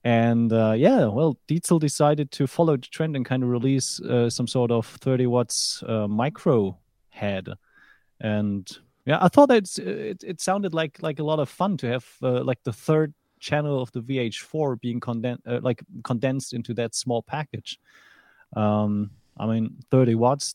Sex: male